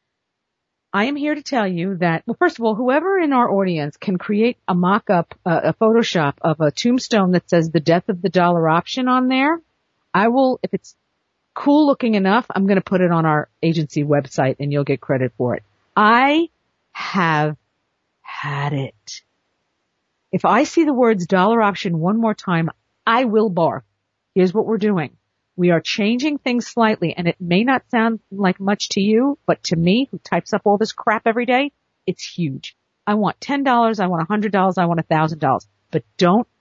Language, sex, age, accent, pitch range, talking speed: English, female, 50-69, American, 170-245 Hz, 190 wpm